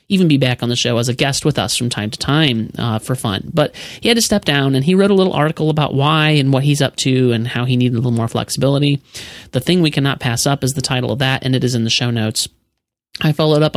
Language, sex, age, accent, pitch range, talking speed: English, male, 30-49, American, 125-155 Hz, 290 wpm